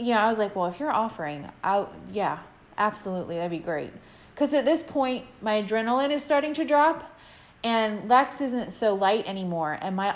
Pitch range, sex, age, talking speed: 190-255 Hz, female, 20-39, 200 wpm